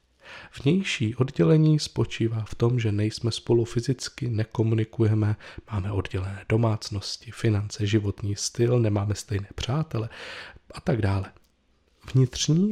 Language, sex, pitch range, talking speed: Czech, male, 105-135 Hz, 110 wpm